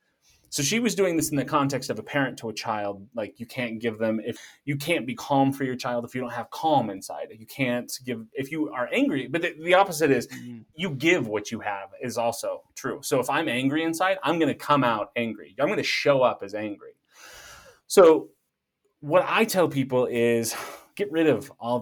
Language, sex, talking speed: English, male, 225 wpm